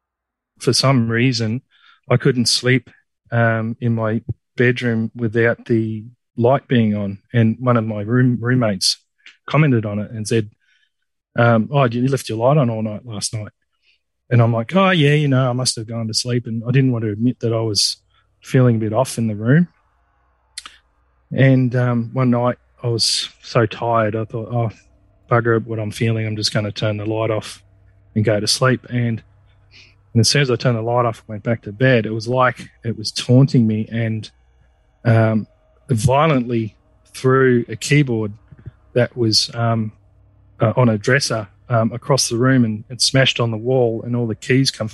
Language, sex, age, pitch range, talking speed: English, male, 30-49, 105-125 Hz, 190 wpm